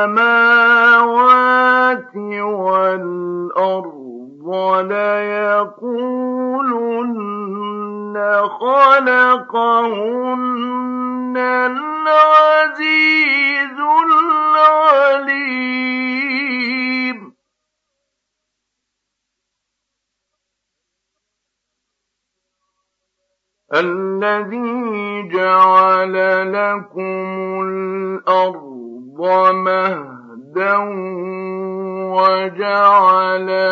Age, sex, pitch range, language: 50-69, male, 185-235 Hz, Arabic